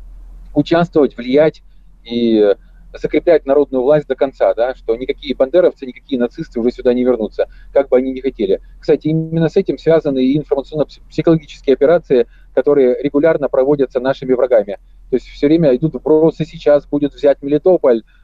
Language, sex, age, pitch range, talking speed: Russian, male, 30-49, 130-165 Hz, 150 wpm